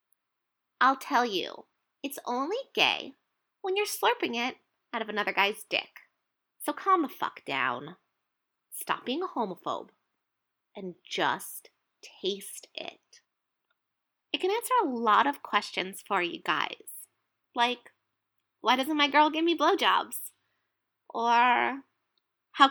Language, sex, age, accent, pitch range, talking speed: English, female, 20-39, American, 230-355 Hz, 125 wpm